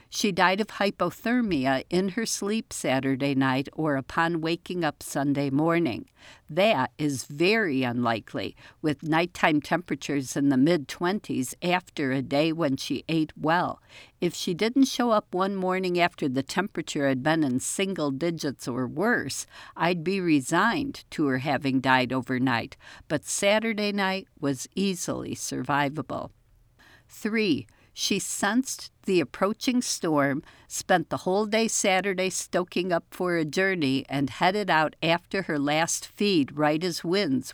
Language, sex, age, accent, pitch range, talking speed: English, female, 60-79, American, 140-195 Hz, 140 wpm